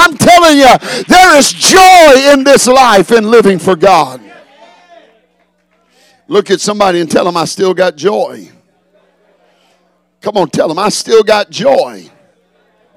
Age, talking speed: 50-69, 145 wpm